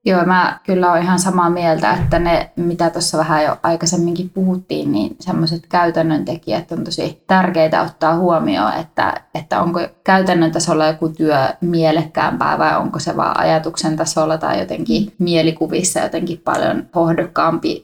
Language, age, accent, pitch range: Finnish, 20-39, native, 165-180 Hz